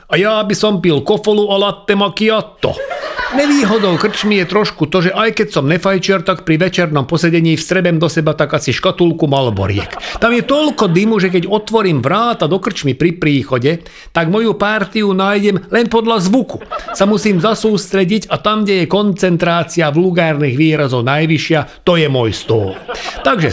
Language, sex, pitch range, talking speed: Slovak, male, 145-205 Hz, 170 wpm